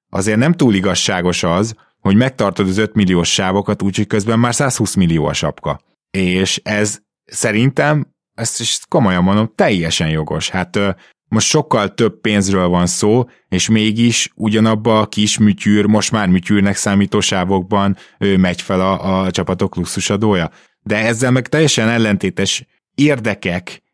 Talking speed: 145 wpm